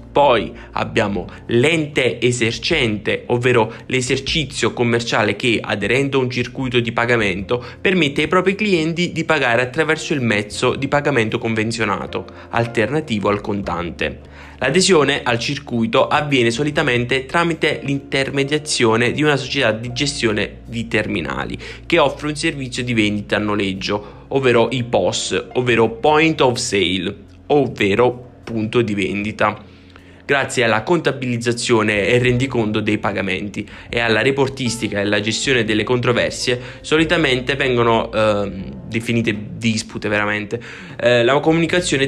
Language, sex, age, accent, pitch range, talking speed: Italian, male, 20-39, native, 110-140 Hz, 125 wpm